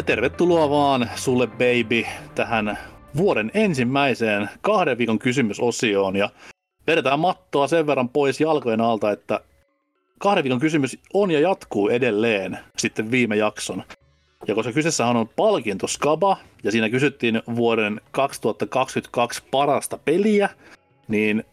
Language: Finnish